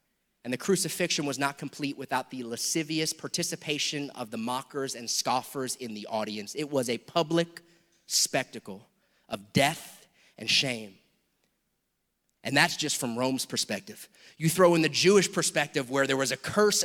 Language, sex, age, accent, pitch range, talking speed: English, male, 30-49, American, 130-165 Hz, 155 wpm